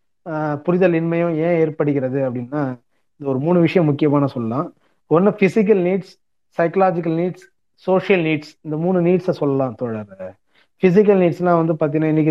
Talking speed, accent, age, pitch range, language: 135 wpm, native, 30-49, 140-175 Hz, Tamil